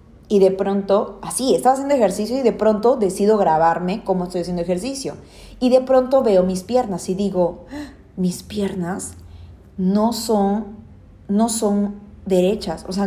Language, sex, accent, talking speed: Spanish, female, Mexican, 145 wpm